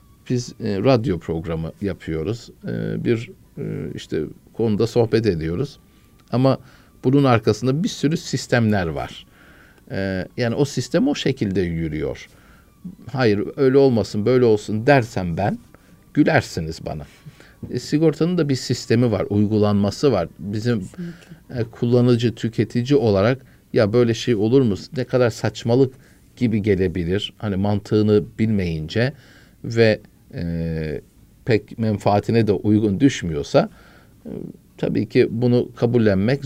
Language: Turkish